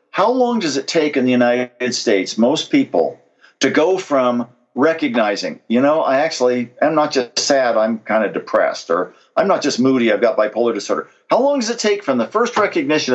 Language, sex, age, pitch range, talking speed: English, male, 50-69, 125-180 Hz, 205 wpm